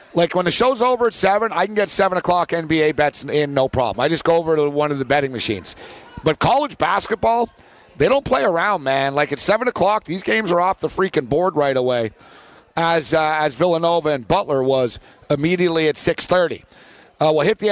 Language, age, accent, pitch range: English, 50-69, American, 145-175 Hz